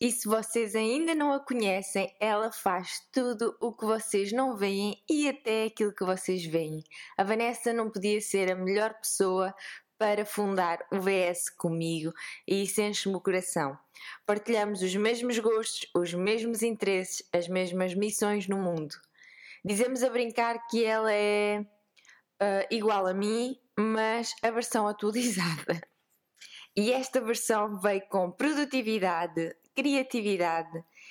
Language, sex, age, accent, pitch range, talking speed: Portuguese, female, 20-39, Brazilian, 195-230 Hz, 135 wpm